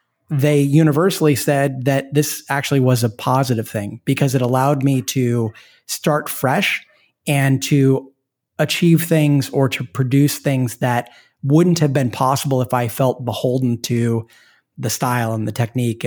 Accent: American